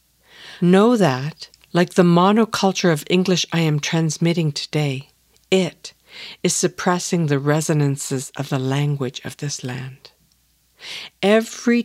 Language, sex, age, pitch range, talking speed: English, female, 60-79, 145-195 Hz, 115 wpm